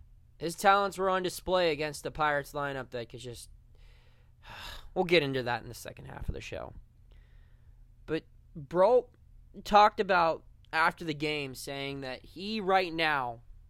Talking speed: 155 wpm